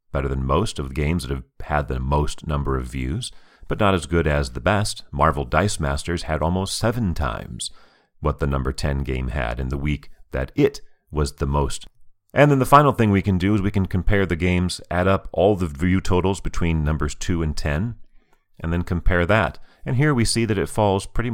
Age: 40-59